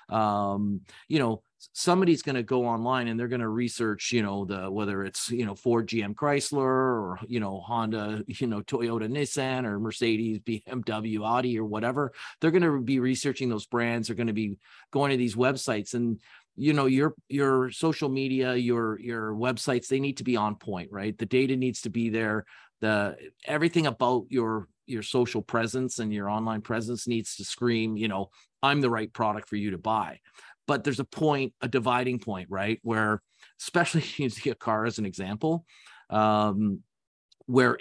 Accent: American